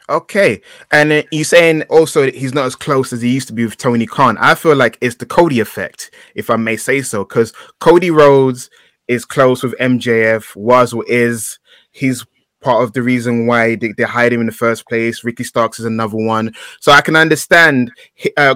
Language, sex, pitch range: English, male, 120-150 Hz